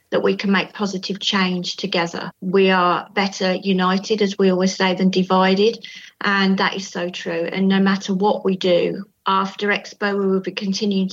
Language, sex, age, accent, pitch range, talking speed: English, female, 40-59, British, 185-200 Hz, 185 wpm